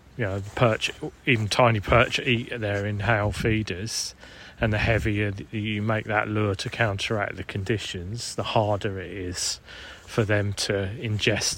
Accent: British